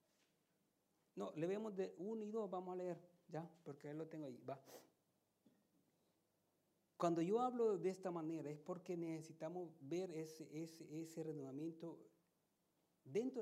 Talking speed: 145 wpm